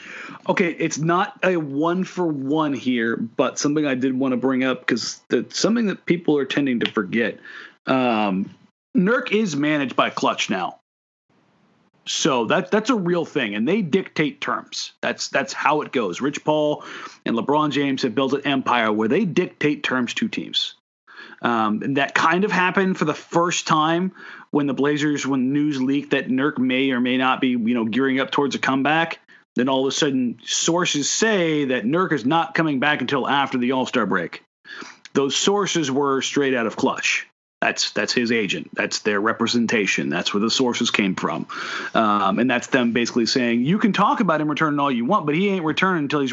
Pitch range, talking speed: 130-170 Hz, 195 wpm